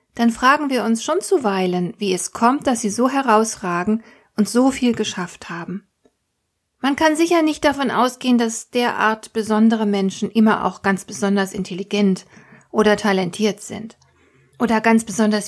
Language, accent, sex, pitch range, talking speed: German, German, female, 195-245 Hz, 150 wpm